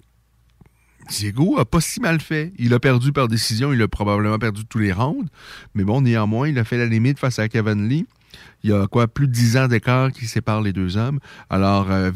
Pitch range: 100-125 Hz